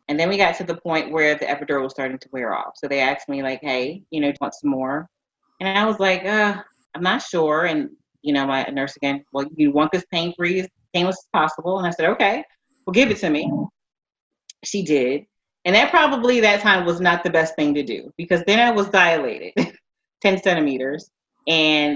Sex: female